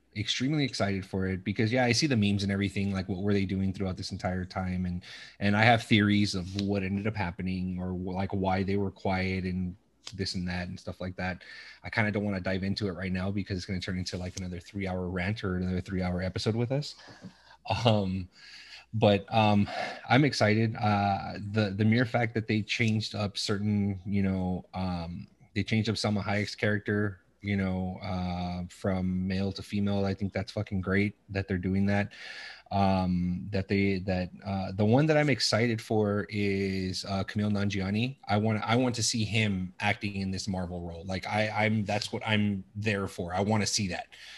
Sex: male